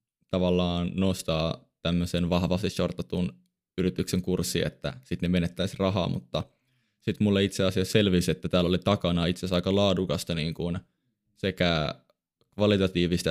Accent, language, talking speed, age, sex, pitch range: native, Finnish, 130 wpm, 20-39, male, 90-100 Hz